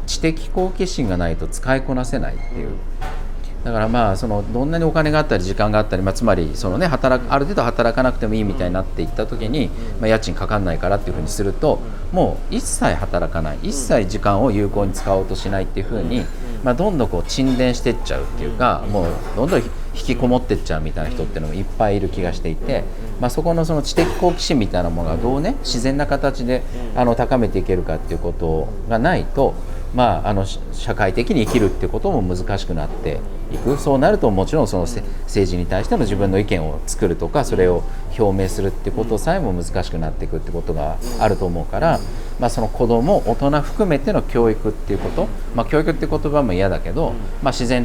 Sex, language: male, Japanese